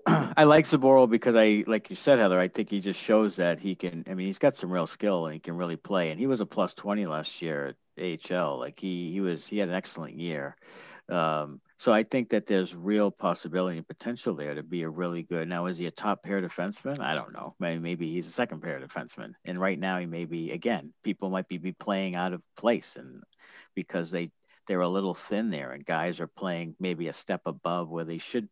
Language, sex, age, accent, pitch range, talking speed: English, male, 50-69, American, 85-115 Hz, 240 wpm